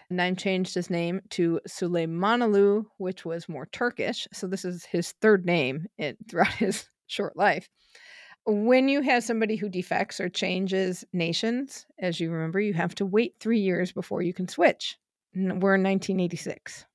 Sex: female